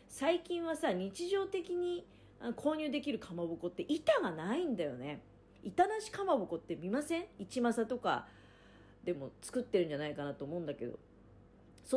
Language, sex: Japanese, female